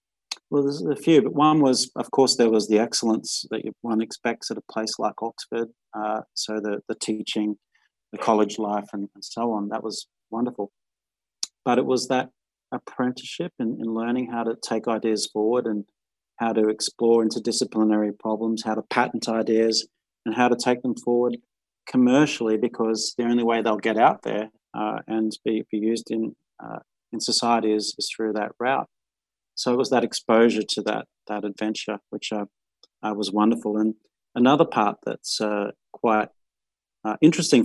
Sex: male